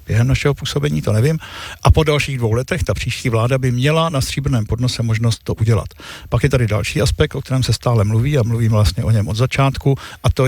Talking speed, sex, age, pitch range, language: 230 wpm, male, 50-69, 115-140 Hz, Czech